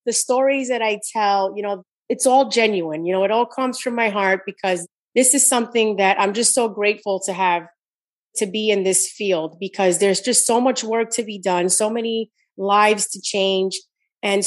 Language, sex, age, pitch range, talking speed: English, female, 30-49, 190-225 Hz, 205 wpm